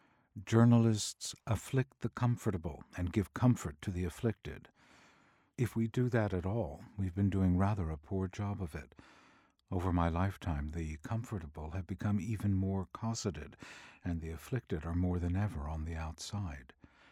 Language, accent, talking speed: English, American, 160 wpm